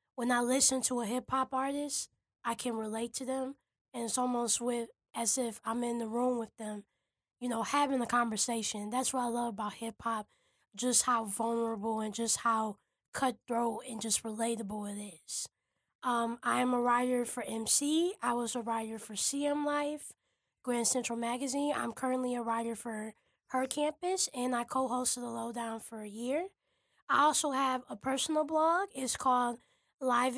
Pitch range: 235-265 Hz